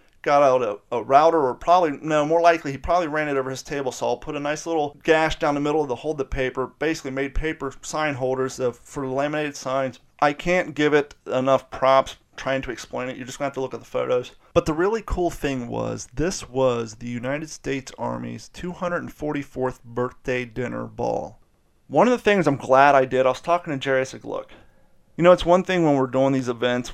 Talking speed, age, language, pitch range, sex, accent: 225 wpm, 30-49, English, 125-145 Hz, male, American